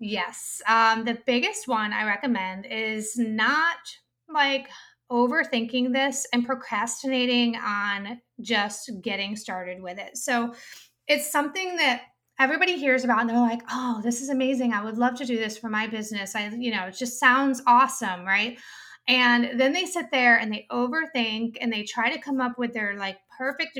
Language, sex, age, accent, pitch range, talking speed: English, female, 20-39, American, 220-270 Hz, 175 wpm